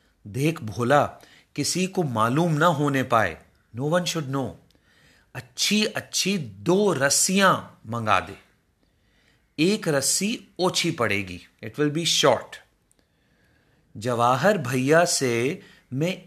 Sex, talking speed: male, 110 wpm